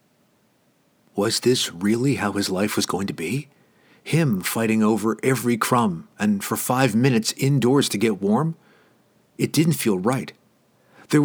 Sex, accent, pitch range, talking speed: male, American, 110-155 Hz, 150 wpm